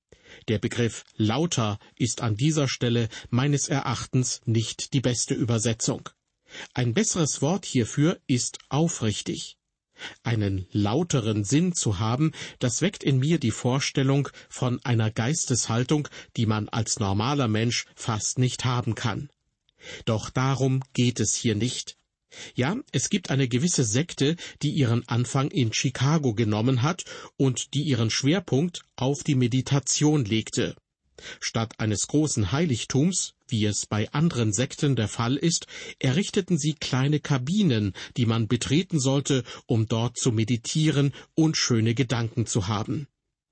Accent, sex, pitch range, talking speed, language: German, male, 115-145 Hz, 135 wpm, German